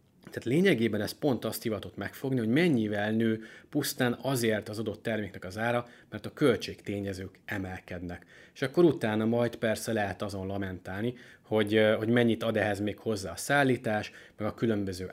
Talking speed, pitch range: 165 wpm, 100-120 Hz